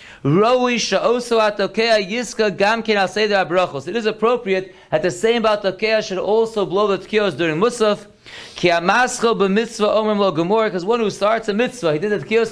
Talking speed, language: 110 wpm, English